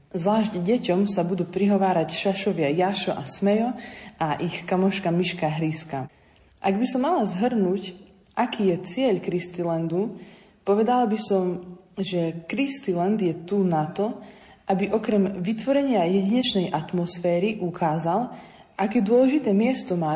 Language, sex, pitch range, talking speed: Slovak, female, 170-205 Hz, 125 wpm